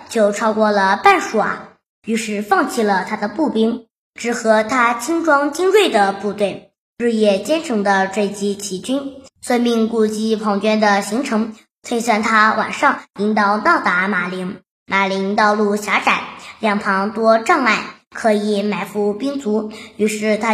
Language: Chinese